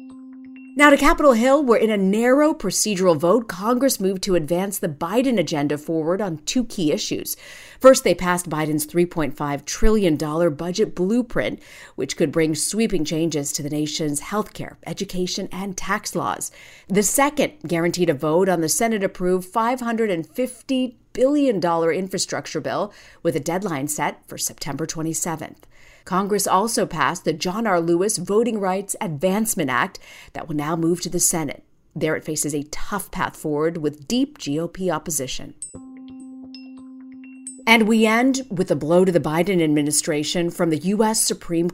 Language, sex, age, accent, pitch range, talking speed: English, female, 40-59, American, 160-225 Hz, 155 wpm